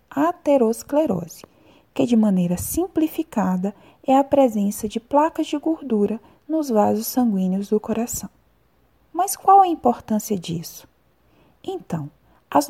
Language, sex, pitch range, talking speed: Portuguese, female, 195-290 Hz, 115 wpm